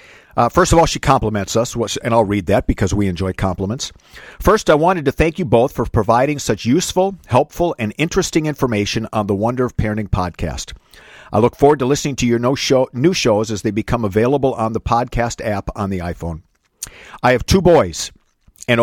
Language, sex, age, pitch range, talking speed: English, male, 50-69, 105-140 Hz, 205 wpm